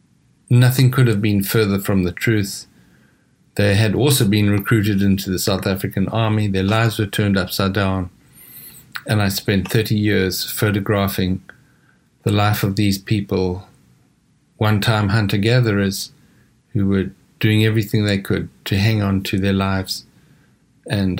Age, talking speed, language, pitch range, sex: 50-69, 140 wpm, English, 95-115 Hz, male